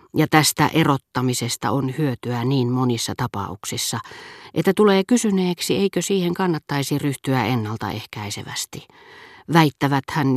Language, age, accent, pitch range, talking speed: Finnish, 40-59, native, 120-160 Hz, 105 wpm